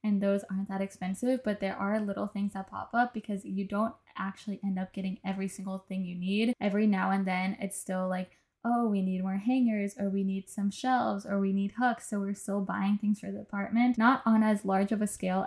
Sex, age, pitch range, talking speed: female, 10-29, 195-220 Hz, 235 wpm